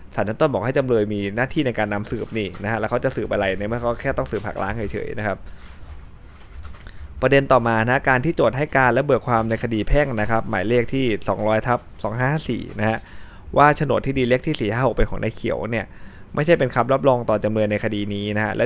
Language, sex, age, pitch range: Thai, male, 20-39, 105-130 Hz